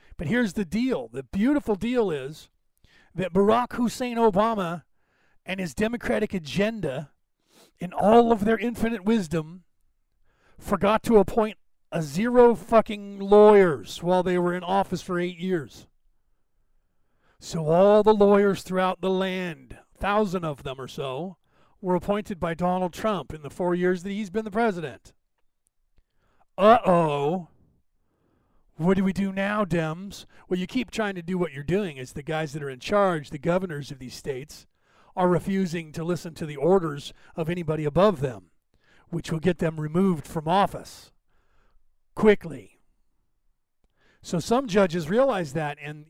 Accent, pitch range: American, 155-205 Hz